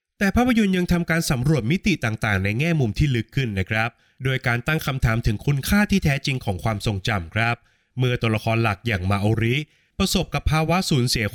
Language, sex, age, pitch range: Thai, male, 20-39, 110-150 Hz